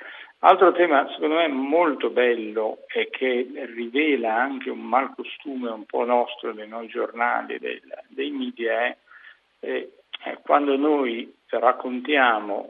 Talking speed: 130 wpm